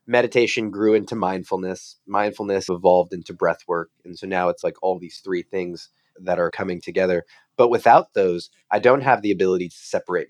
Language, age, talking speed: English, 30-49, 185 wpm